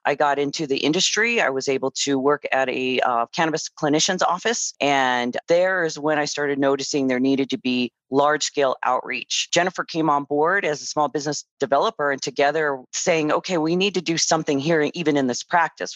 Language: English